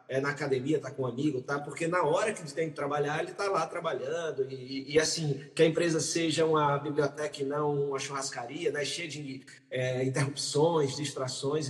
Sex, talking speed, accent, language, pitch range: male, 190 wpm, Brazilian, Portuguese, 140-195 Hz